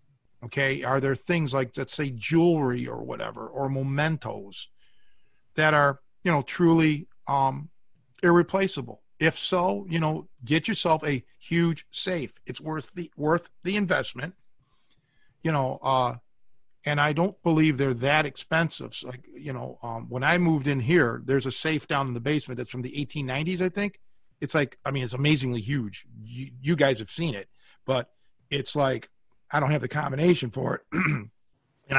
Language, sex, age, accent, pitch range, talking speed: English, male, 50-69, American, 130-170 Hz, 170 wpm